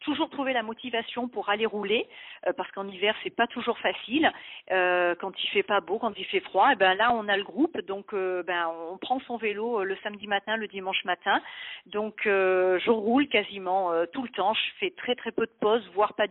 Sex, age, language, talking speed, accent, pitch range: female, 40-59, French, 230 wpm, French, 200-245 Hz